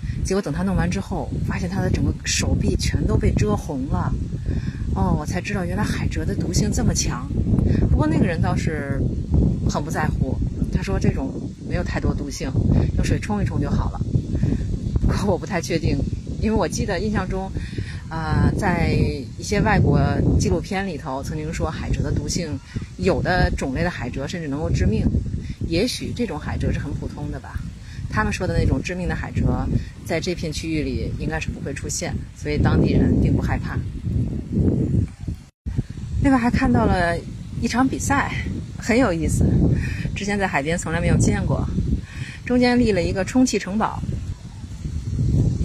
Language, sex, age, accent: Chinese, female, 30-49, native